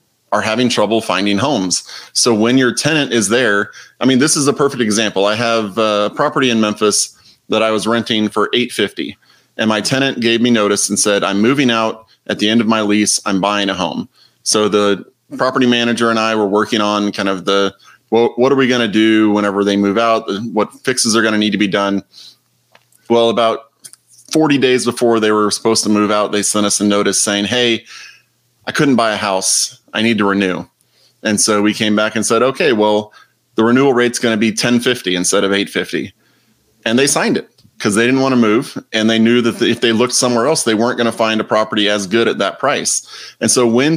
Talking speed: 220 wpm